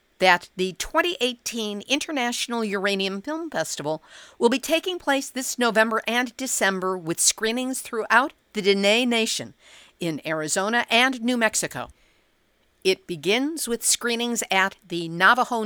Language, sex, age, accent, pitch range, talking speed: English, female, 50-69, American, 185-240 Hz, 125 wpm